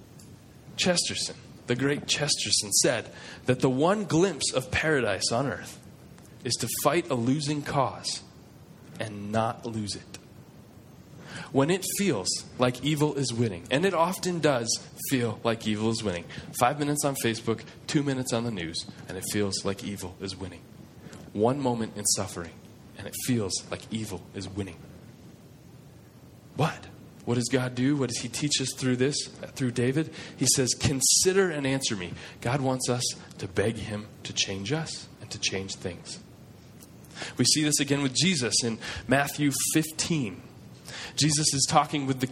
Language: English